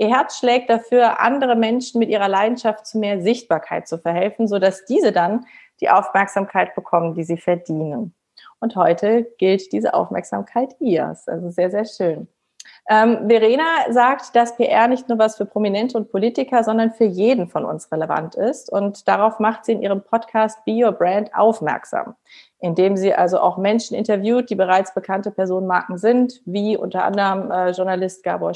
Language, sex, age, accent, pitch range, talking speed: German, female, 30-49, German, 190-235 Hz, 170 wpm